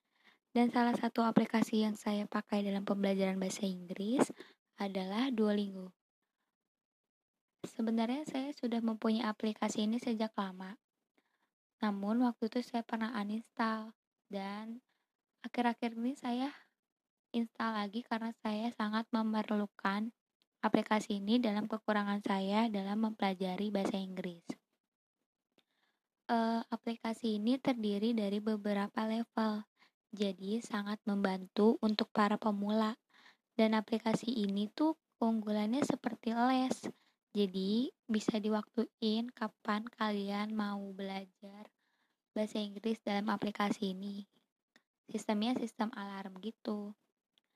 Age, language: 20-39, Indonesian